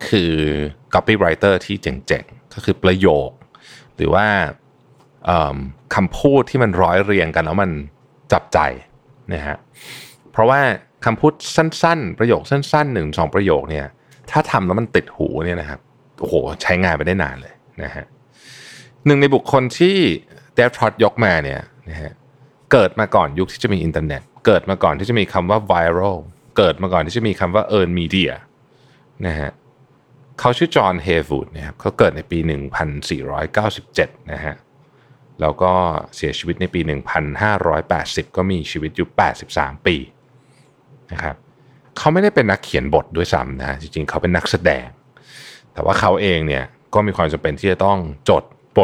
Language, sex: Thai, male